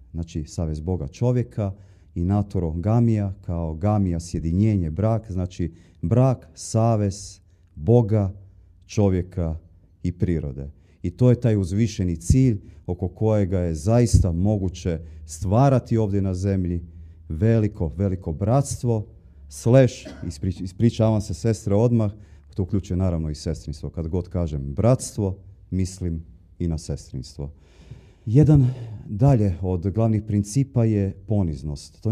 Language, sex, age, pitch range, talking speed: Croatian, male, 40-59, 85-110 Hz, 115 wpm